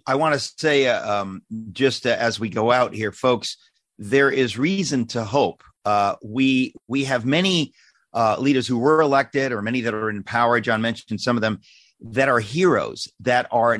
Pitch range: 115-145 Hz